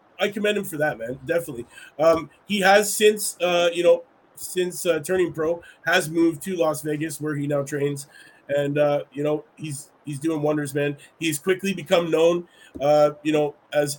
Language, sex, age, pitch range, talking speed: English, male, 30-49, 140-160 Hz, 190 wpm